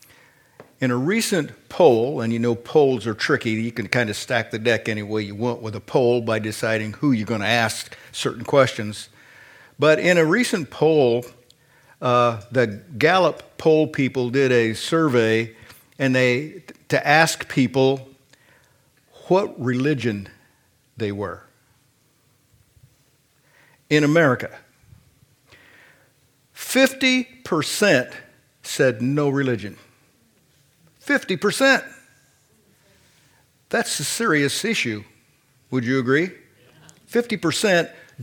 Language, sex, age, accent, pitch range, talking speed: English, male, 50-69, American, 120-165 Hz, 110 wpm